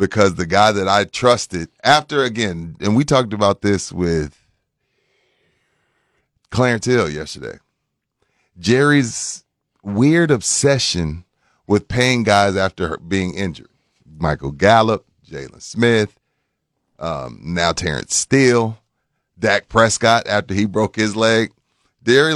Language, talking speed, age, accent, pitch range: English, 115 wpm, 30-49, American, 95-120 Hz